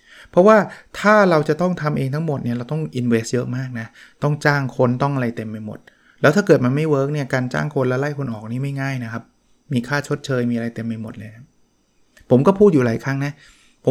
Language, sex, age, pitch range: Thai, male, 20-39, 120-145 Hz